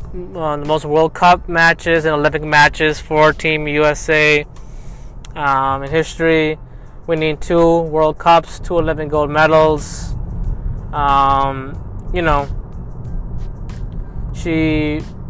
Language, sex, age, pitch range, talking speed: English, male, 20-39, 145-160 Hz, 100 wpm